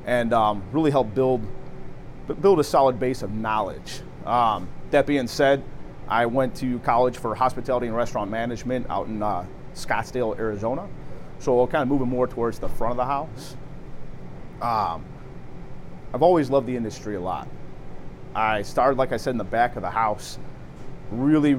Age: 30-49